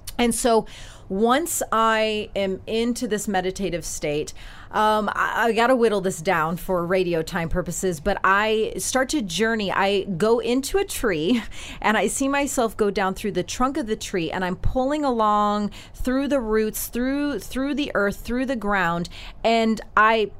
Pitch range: 185-250 Hz